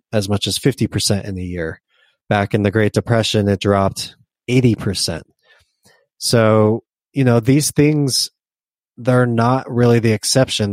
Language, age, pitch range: English, 20-39, 100-115 Hz